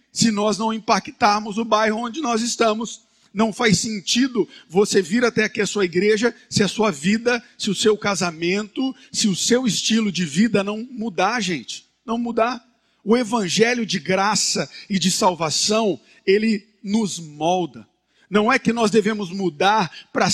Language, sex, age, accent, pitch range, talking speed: Portuguese, male, 50-69, Brazilian, 190-235 Hz, 160 wpm